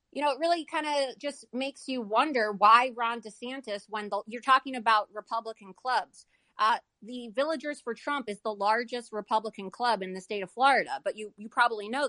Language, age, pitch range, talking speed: English, 30-49, 205-250 Hz, 200 wpm